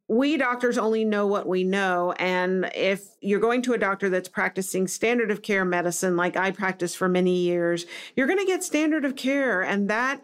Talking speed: 205 wpm